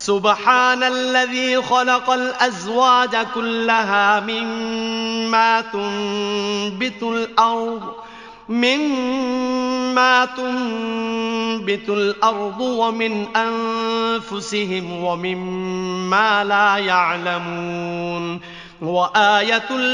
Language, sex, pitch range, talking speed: Arabic, male, 200-230 Hz, 50 wpm